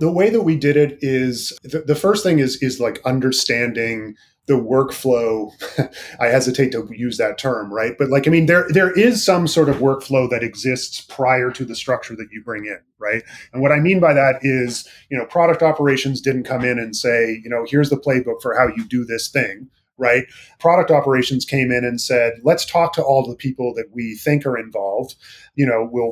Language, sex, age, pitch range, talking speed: English, male, 30-49, 120-145 Hz, 215 wpm